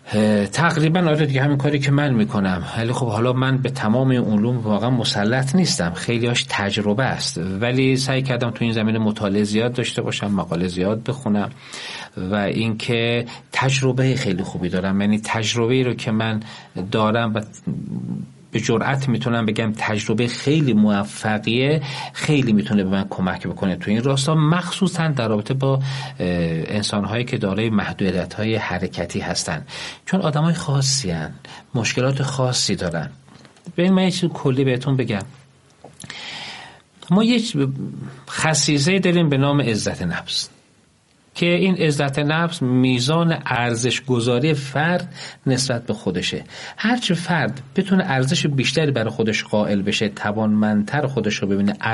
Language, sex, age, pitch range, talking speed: Persian, male, 40-59, 105-145 Hz, 135 wpm